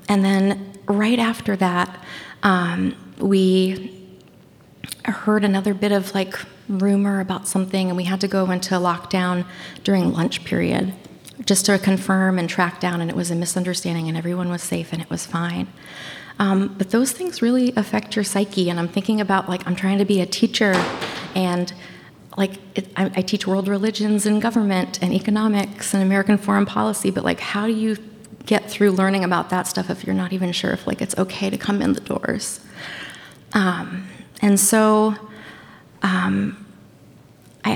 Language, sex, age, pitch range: English, female, 30-49, 180-205 Hz